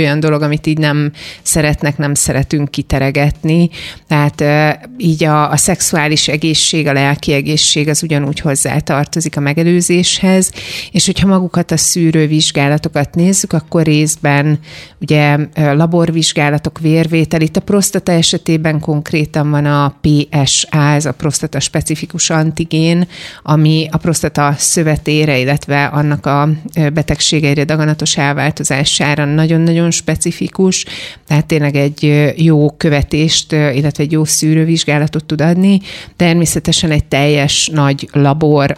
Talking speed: 120 wpm